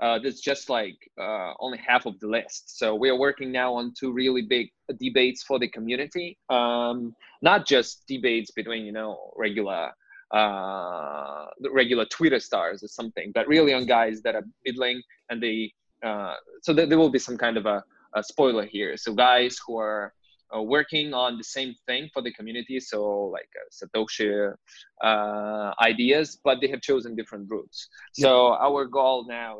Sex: male